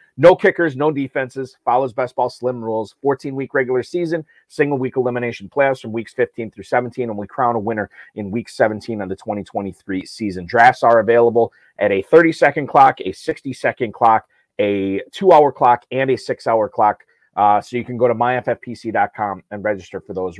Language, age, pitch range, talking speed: English, 30-49, 105-130 Hz, 175 wpm